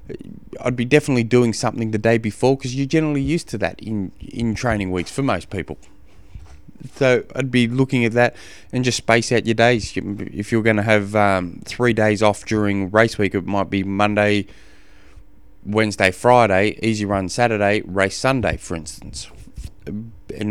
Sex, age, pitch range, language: male, 20-39, 95-115 Hz, English